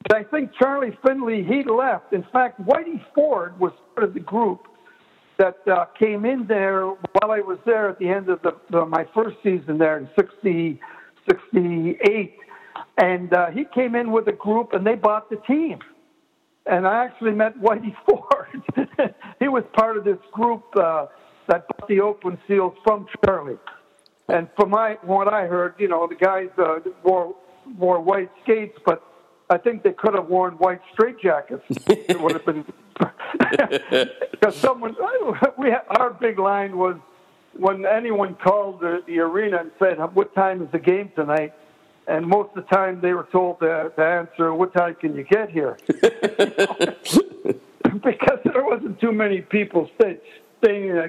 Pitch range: 180-225 Hz